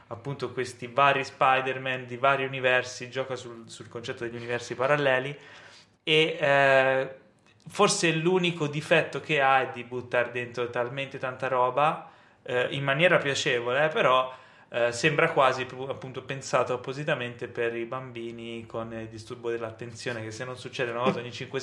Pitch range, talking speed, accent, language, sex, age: 115-135 Hz, 145 wpm, native, Italian, male, 20-39